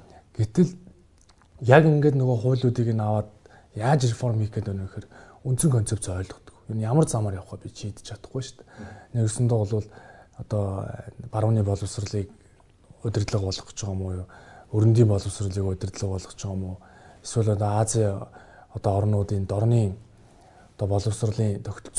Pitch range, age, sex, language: 105-125 Hz, 20-39, male, Korean